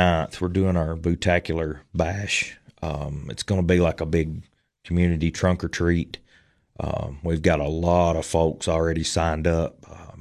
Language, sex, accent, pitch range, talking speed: English, male, American, 80-95 Hz, 165 wpm